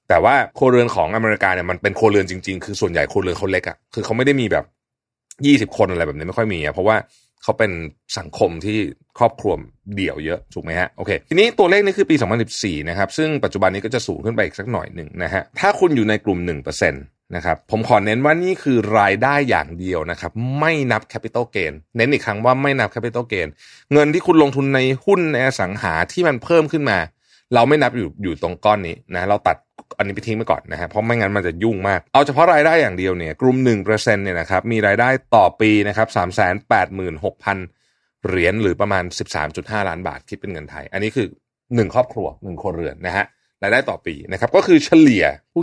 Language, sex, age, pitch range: Thai, male, 30-49, 95-130 Hz